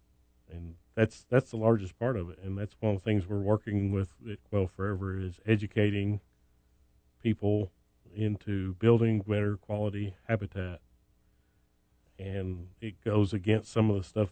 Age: 40-59